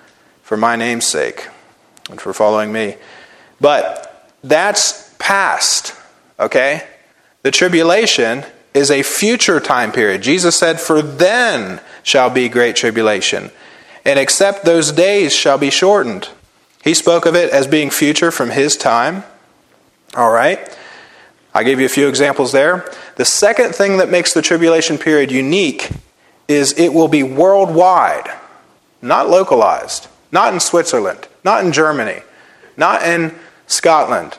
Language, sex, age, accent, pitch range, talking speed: English, male, 30-49, American, 130-170 Hz, 135 wpm